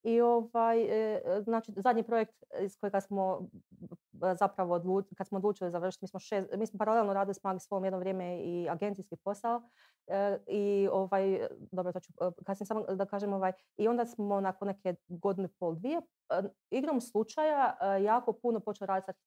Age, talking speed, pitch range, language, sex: 30-49, 155 wpm, 185-225 Hz, Croatian, female